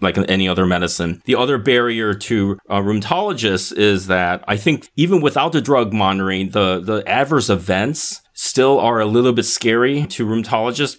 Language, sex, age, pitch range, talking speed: English, male, 30-49, 105-155 Hz, 165 wpm